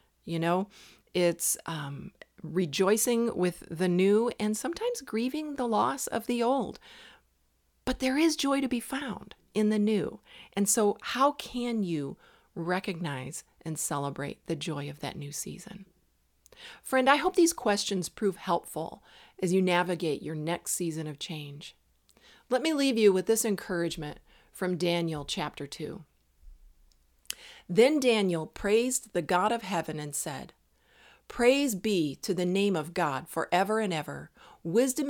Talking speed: 145 wpm